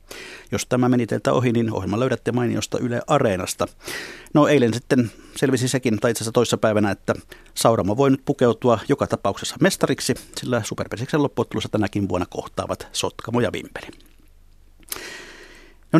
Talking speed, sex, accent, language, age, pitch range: 145 wpm, male, native, Finnish, 50-69, 105-130 Hz